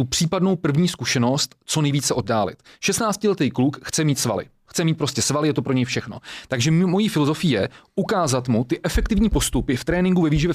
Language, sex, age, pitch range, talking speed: Czech, male, 30-49, 130-165 Hz, 190 wpm